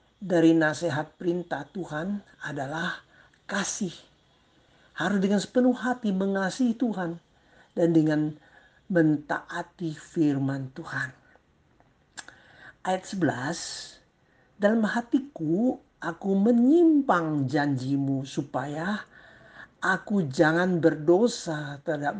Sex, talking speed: male, 80 wpm